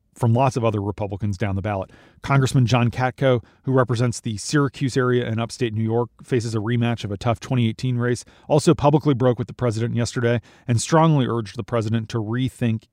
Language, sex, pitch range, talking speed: English, male, 115-135 Hz, 195 wpm